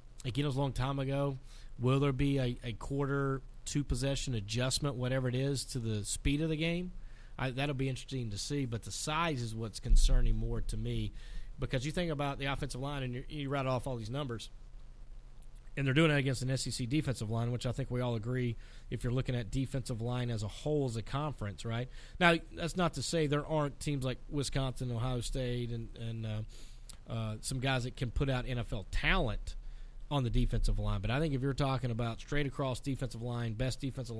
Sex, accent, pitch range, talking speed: male, American, 115-135 Hz, 210 wpm